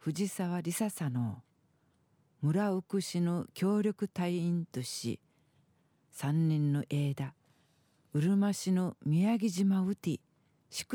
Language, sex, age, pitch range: Japanese, female, 50-69, 150-190 Hz